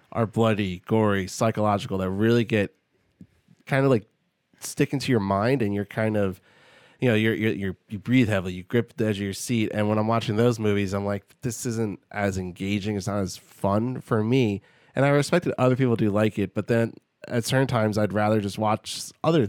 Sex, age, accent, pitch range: male, 20-39, American, 100-115 Hz